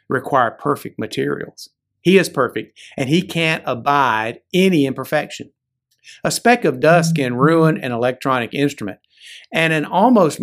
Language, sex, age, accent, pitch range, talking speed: English, male, 50-69, American, 125-195 Hz, 140 wpm